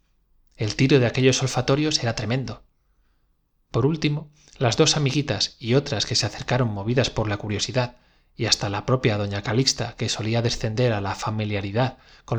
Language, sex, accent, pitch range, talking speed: Spanish, male, Spanish, 110-140 Hz, 165 wpm